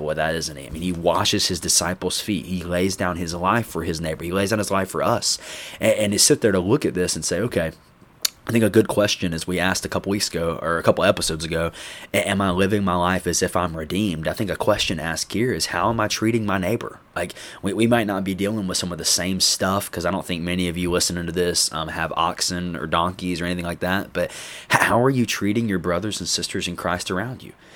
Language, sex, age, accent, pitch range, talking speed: English, male, 20-39, American, 85-105 Hz, 265 wpm